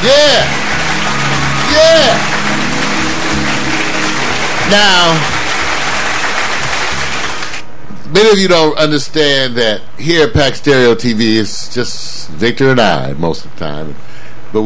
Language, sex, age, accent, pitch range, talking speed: English, male, 50-69, American, 115-160 Hz, 100 wpm